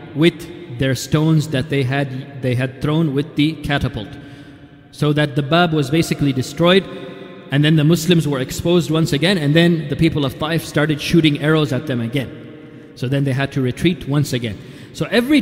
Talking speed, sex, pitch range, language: 190 wpm, male, 135-165 Hz, English